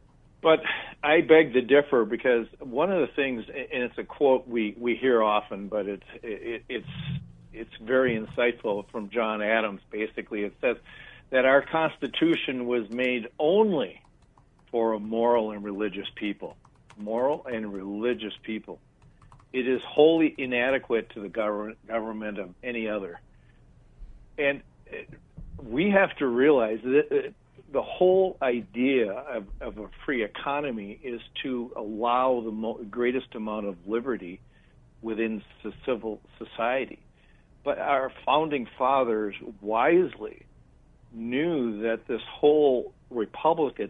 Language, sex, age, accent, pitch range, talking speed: English, male, 60-79, American, 110-130 Hz, 130 wpm